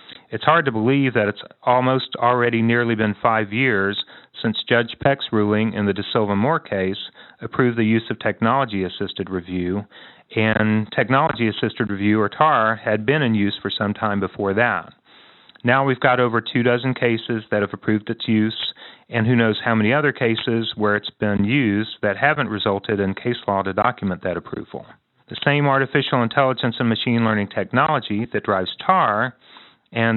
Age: 40-59